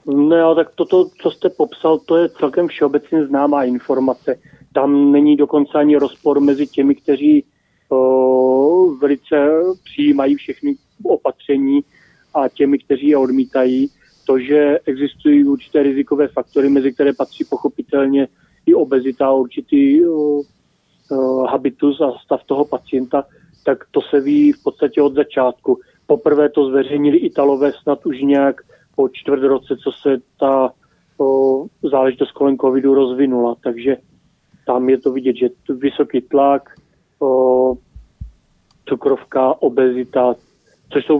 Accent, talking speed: native, 125 wpm